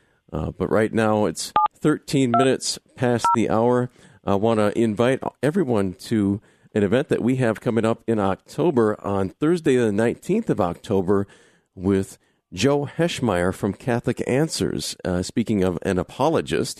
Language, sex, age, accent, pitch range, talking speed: English, male, 50-69, American, 100-120 Hz, 150 wpm